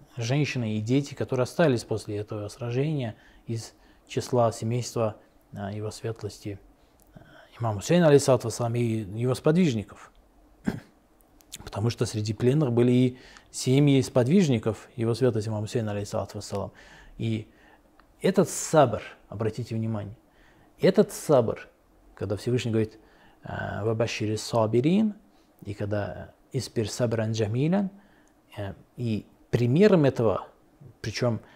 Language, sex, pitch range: Russian, male, 110-140 Hz